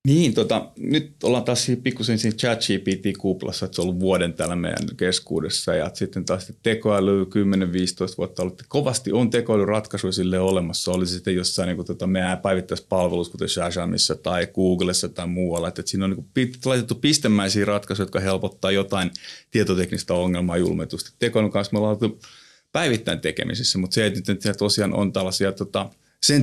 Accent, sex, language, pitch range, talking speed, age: native, male, Finnish, 90-110 Hz, 175 wpm, 30-49